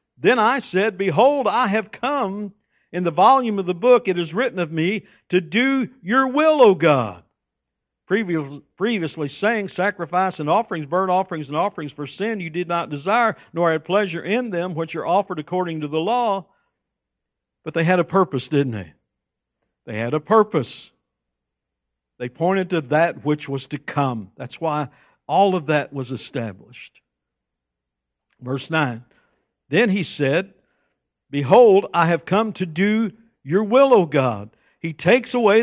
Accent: American